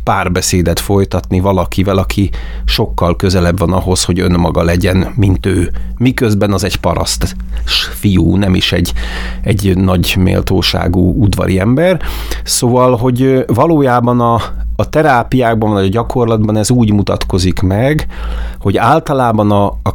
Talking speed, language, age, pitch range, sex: 130 wpm, Hungarian, 30-49, 90-105 Hz, male